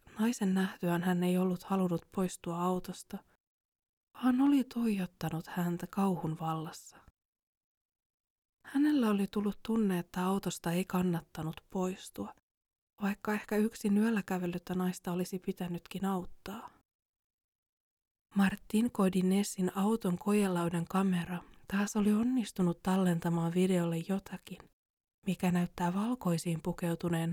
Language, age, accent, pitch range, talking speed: Finnish, 20-39, native, 175-205 Hz, 100 wpm